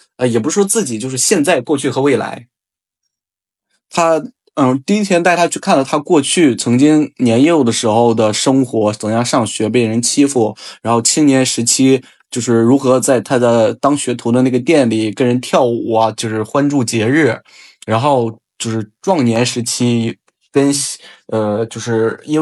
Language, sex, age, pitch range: Chinese, male, 20-39, 115-145 Hz